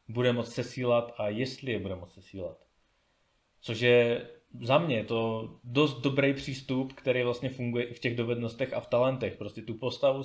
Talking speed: 175 wpm